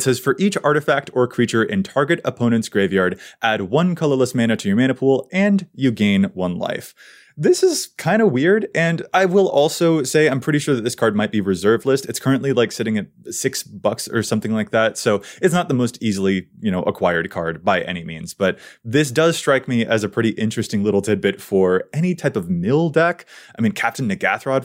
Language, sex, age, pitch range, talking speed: English, male, 20-39, 110-155 Hz, 215 wpm